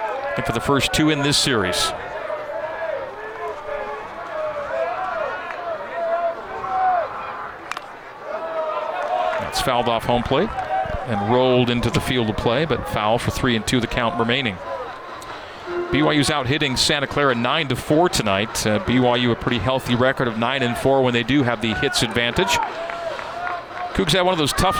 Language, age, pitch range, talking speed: English, 40-59, 120-175 Hz, 150 wpm